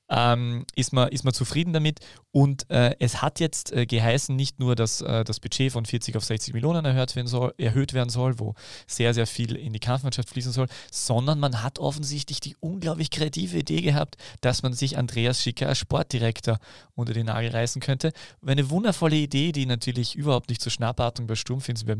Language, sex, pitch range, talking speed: German, male, 115-135 Hz, 200 wpm